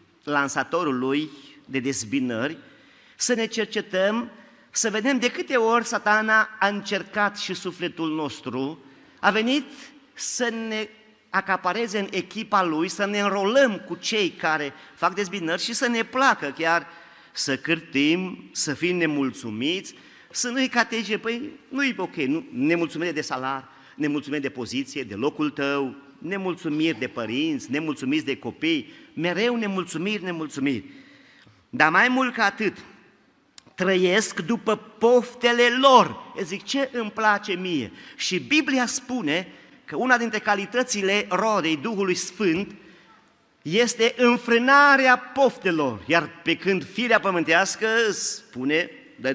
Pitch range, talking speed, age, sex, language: 170-240 Hz, 125 wpm, 40-59, male, Romanian